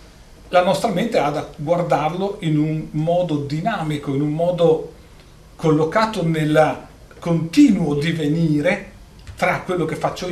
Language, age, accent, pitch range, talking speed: Italian, 40-59, native, 125-180 Hz, 120 wpm